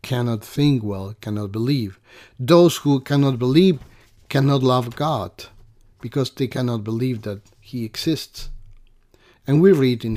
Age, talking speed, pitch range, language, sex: 50-69, 135 wpm, 110-135 Hz, English, male